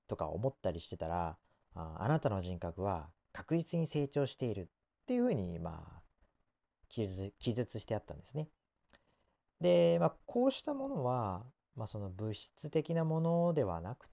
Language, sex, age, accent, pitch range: Japanese, male, 40-59, native, 90-145 Hz